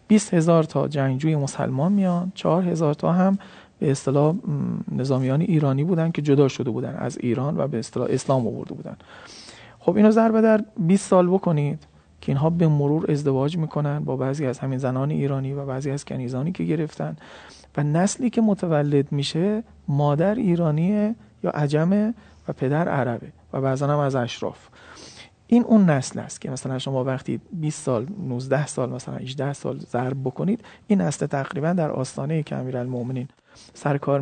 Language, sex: Persian, male